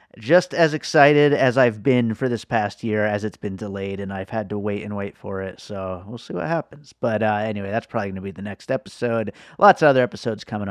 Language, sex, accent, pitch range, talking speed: English, male, American, 110-150 Hz, 245 wpm